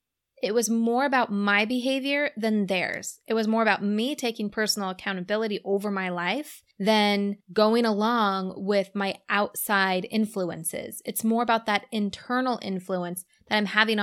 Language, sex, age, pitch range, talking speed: English, female, 20-39, 195-235 Hz, 150 wpm